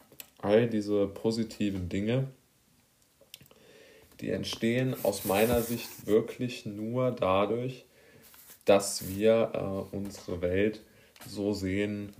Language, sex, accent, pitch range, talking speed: German, male, German, 95-110 Hz, 95 wpm